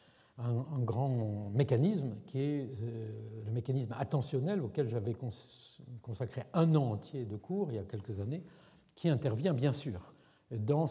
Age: 50-69